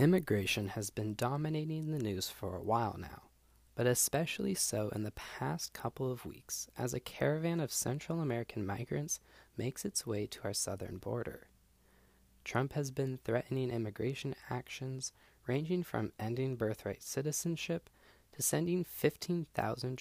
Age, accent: 20-39, American